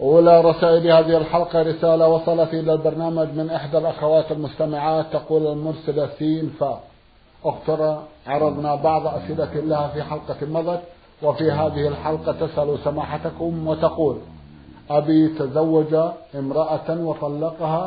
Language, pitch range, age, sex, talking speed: Arabic, 145-170 Hz, 50-69, male, 115 wpm